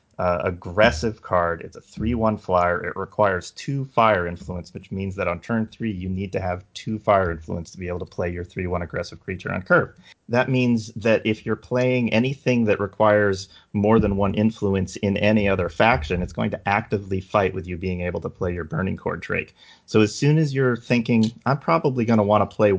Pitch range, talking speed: 90-105 Hz, 215 wpm